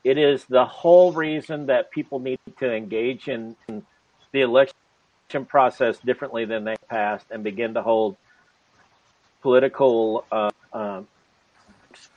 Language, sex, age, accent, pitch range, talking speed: English, male, 50-69, American, 120-150 Hz, 125 wpm